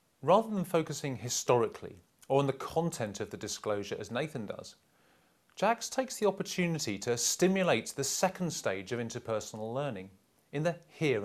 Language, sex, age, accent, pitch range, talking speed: English, male, 30-49, British, 120-175 Hz, 155 wpm